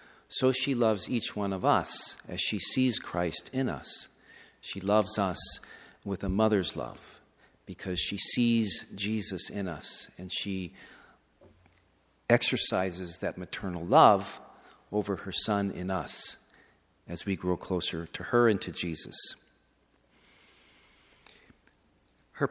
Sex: male